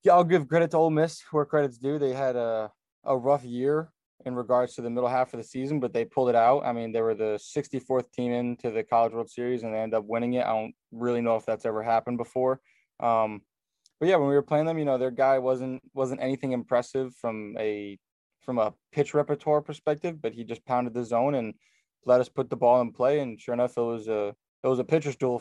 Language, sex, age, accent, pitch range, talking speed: English, male, 20-39, American, 115-130 Hz, 250 wpm